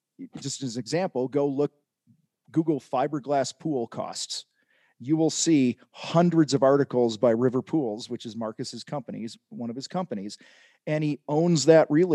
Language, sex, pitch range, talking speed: English, male, 125-150 Hz, 160 wpm